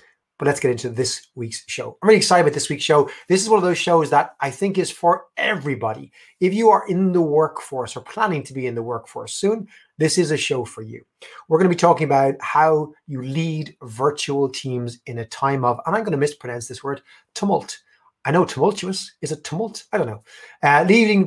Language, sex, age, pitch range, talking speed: English, male, 30-49, 120-155 Hz, 225 wpm